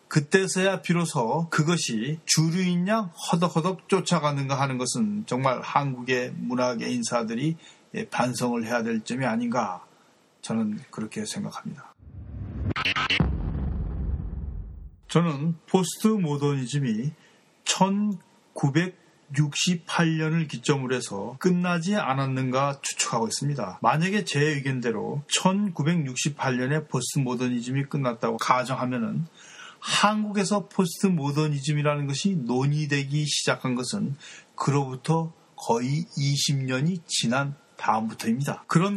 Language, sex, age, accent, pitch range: Korean, male, 40-59, native, 130-180 Hz